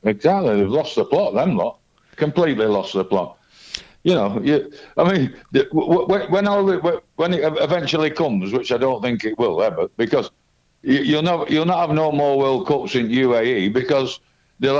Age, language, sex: 60-79, English, male